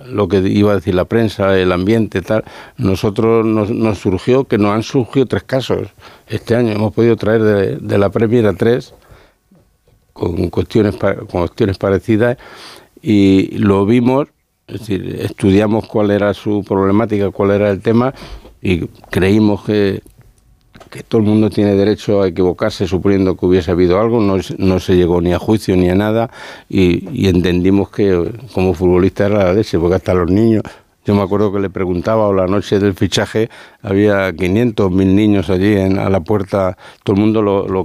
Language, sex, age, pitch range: Spanish, male, 60-79, 95-110 Hz